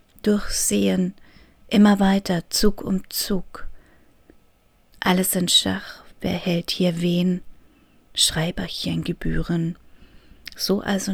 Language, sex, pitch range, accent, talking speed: German, female, 150-190 Hz, German, 90 wpm